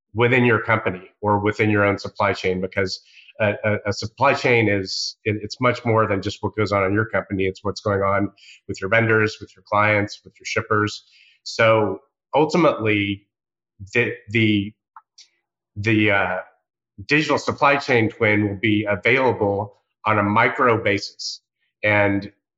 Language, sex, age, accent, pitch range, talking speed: English, male, 30-49, American, 100-115 Hz, 155 wpm